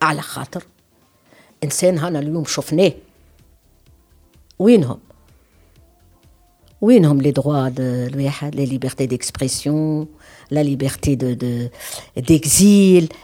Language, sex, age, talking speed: Arabic, female, 60-79, 60 wpm